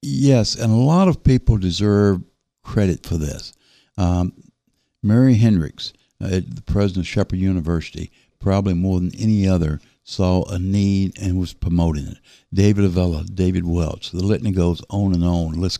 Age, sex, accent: 60-79, male, American